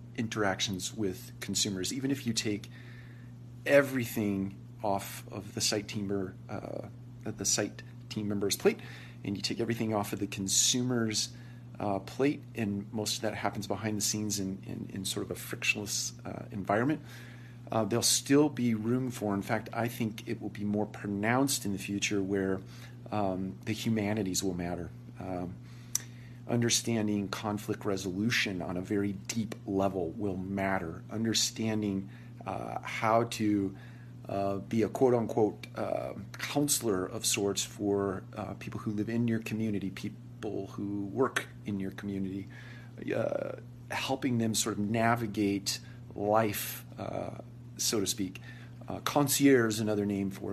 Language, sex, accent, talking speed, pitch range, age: English, male, American, 145 wpm, 100-120 Hz, 40-59